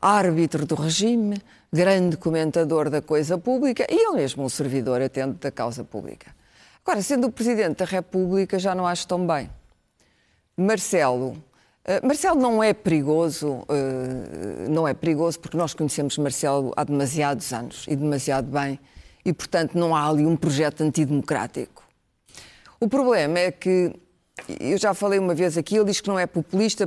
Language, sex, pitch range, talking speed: Portuguese, female, 150-195 Hz, 155 wpm